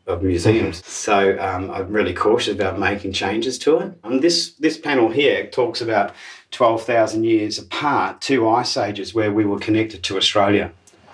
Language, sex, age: English, male, 40-59